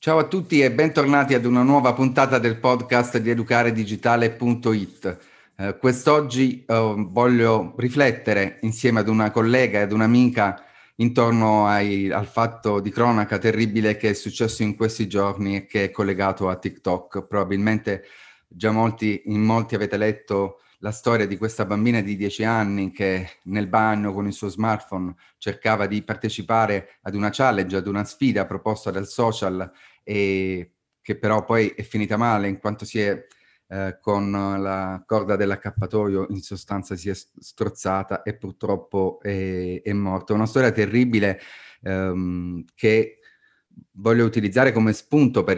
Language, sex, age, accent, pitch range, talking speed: Italian, male, 30-49, native, 100-115 Hz, 145 wpm